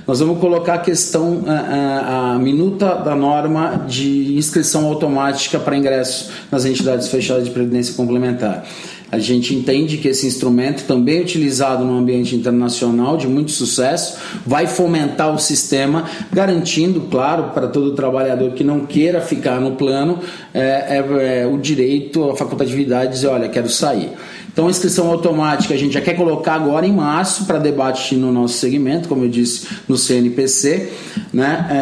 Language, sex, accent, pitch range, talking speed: Portuguese, male, Brazilian, 130-170 Hz, 155 wpm